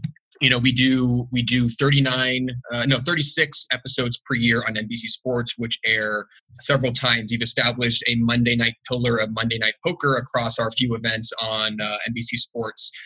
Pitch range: 115-130 Hz